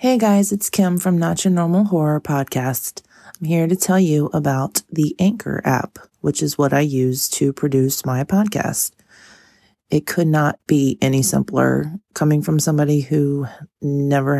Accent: American